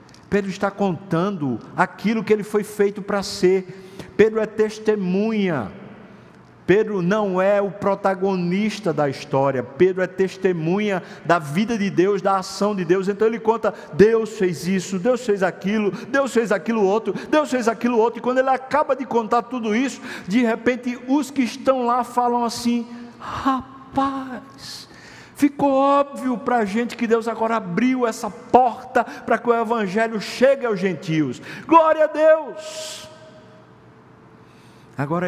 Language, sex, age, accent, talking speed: Portuguese, male, 50-69, Brazilian, 150 wpm